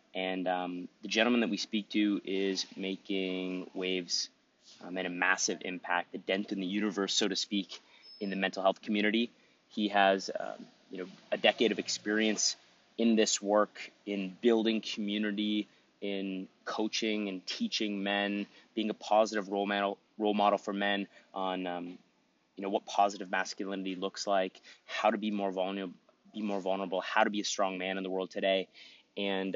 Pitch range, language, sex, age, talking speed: 95-105 Hz, English, male, 30-49, 175 wpm